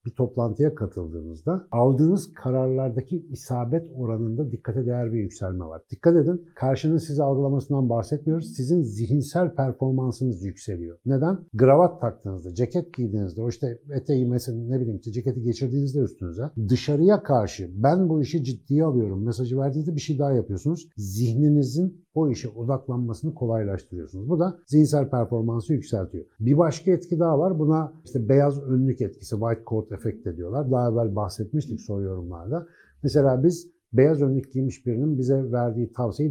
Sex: male